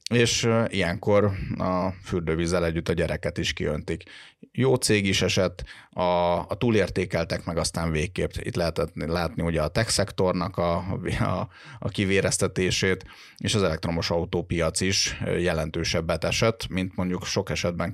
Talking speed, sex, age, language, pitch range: 135 wpm, male, 30-49, Hungarian, 85-100 Hz